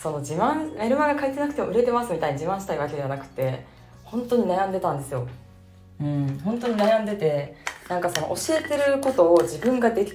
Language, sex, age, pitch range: Japanese, female, 20-39, 140-215 Hz